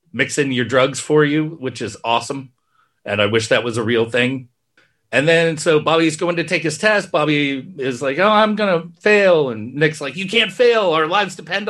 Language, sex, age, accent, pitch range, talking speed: English, male, 40-59, American, 115-165 Hz, 220 wpm